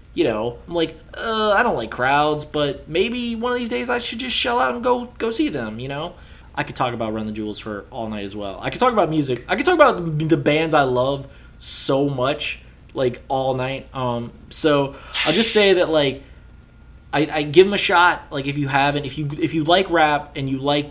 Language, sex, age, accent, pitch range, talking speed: English, male, 20-39, American, 125-165 Hz, 240 wpm